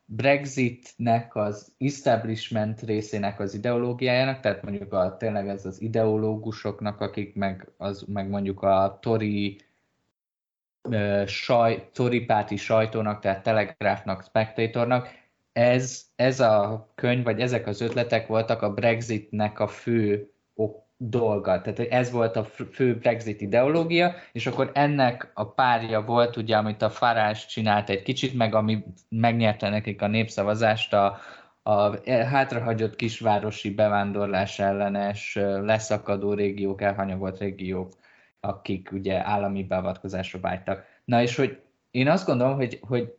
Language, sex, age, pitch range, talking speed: Hungarian, male, 20-39, 100-120 Hz, 125 wpm